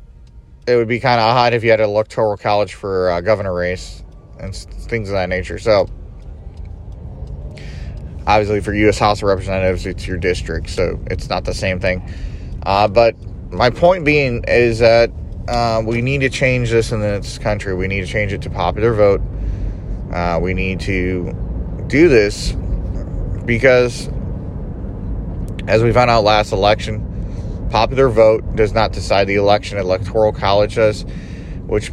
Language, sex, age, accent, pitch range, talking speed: English, male, 30-49, American, 90-110 Hz, 160 wpm